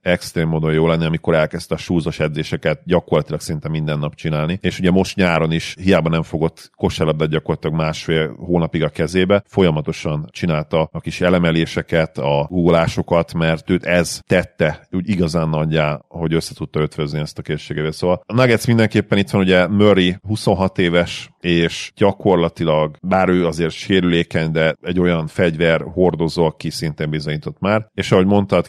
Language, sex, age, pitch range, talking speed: Hungarian, male, 40-59, 80-90 Hz, 160 wpm